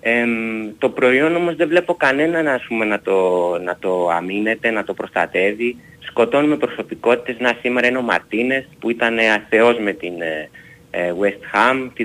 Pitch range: 110-140 Hz